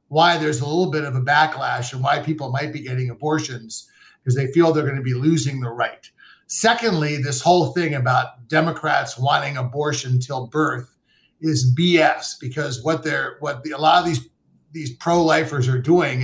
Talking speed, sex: 185 wpm, male